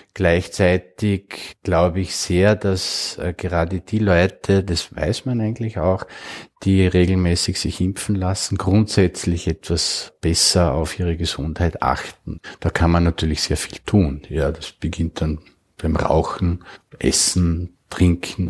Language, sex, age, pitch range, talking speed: German, male, 50-69, 85-100 Hz, 135 wpm